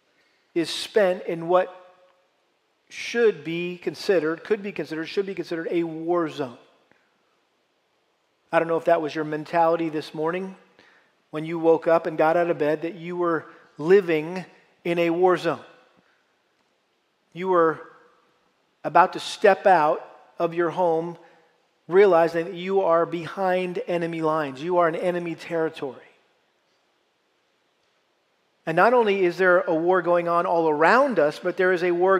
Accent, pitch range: American, 165-190 Hz